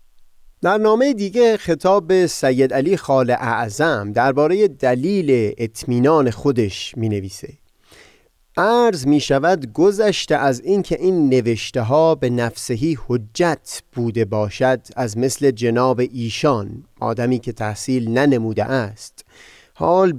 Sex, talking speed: male, 115 wpm